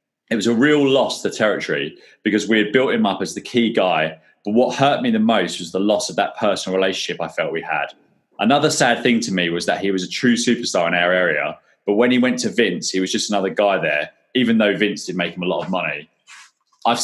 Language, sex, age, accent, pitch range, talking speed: English, male, 20-39, British, 95-125 Hz, 255 wpm